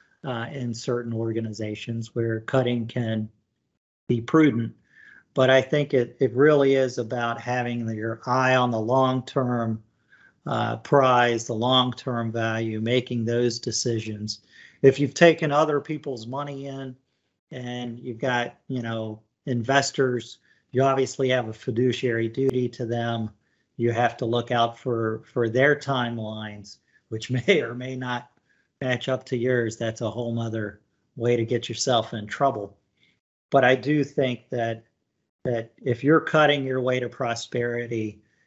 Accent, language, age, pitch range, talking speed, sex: American, English, 50-69, 115-135 Hz, 145 wpm, male